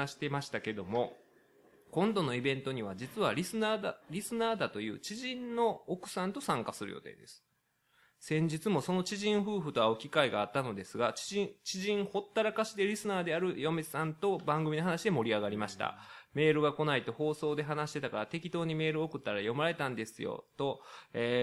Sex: male